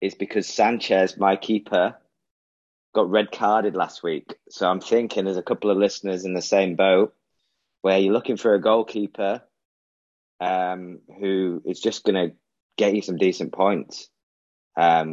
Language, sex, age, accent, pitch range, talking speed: English, male, 20-39, British, 90-105 Hz, 160 wpm